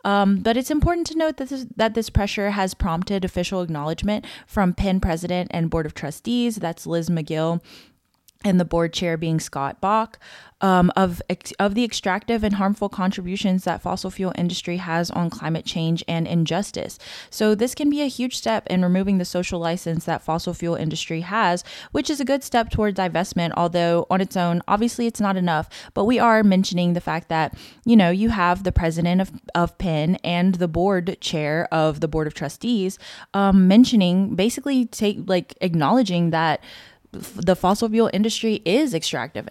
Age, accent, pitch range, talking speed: 20-39, American, 165-205 Hz, 180 wpm